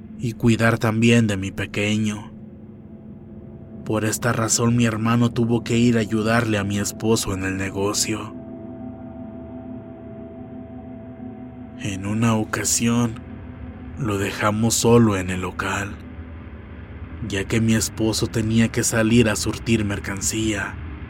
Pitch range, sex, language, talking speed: 100-115 Hz, male, Spanish, 115 wpm